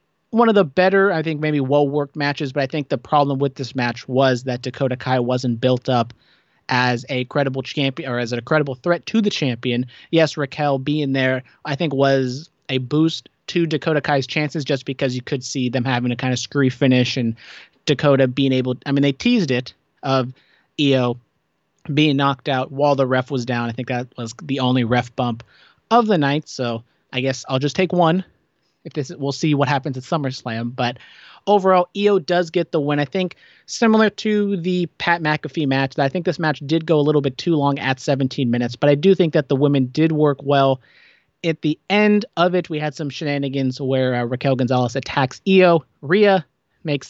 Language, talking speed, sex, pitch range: English, 210 wpm, male, 130-160 Hz